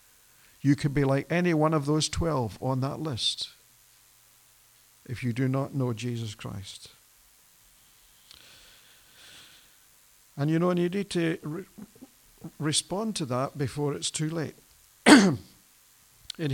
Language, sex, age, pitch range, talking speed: English, male, 60-79, 120-155 Hz, 125 wpm